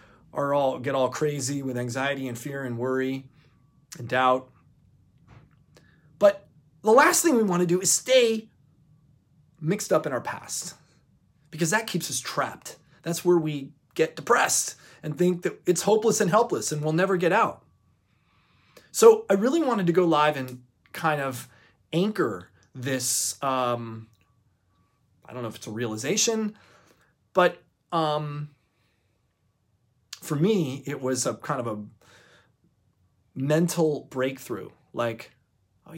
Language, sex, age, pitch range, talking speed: English, male, 30-49, 125-175 Hz, 140 wpm